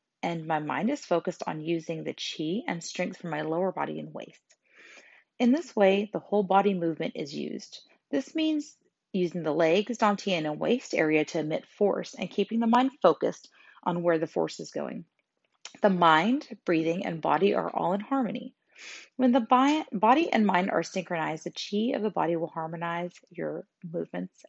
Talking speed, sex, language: 185 wpm, female, English